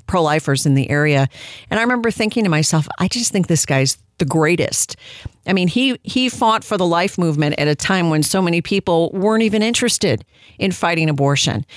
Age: 50-69